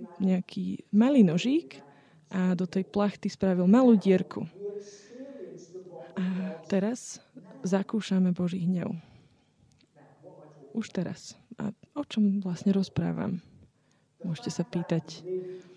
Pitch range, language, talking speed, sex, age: 175-210 Hz, Slovak, 95 wpm, female, 20-39